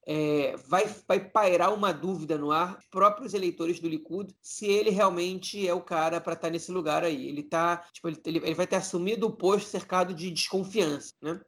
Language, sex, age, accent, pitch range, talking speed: Portuguese, male, 30-49, Brazilian, 165-200 Hz, 200 wpm